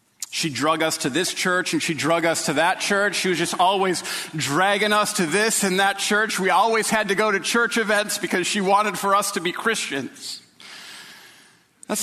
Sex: male